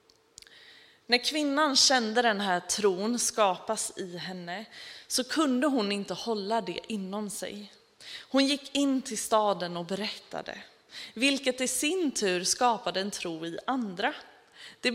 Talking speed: 135 wpm